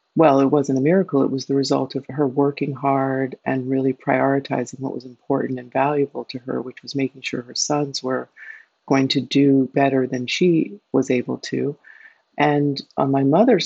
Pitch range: 135-155 Hz